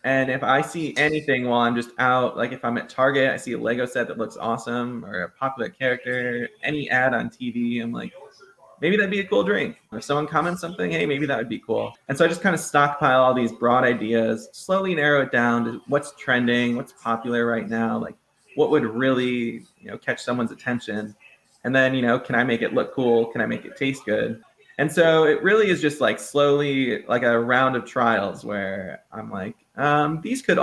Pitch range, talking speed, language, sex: 115-145 Hz, 225 wpm, English, male